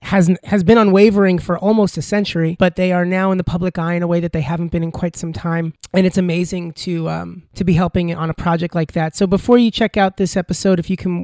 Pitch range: 180-230 Hz